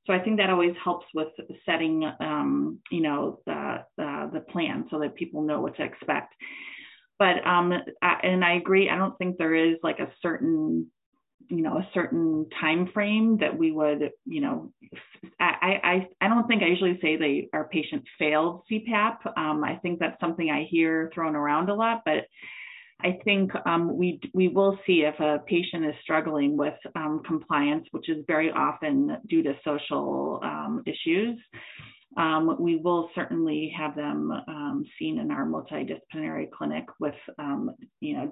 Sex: female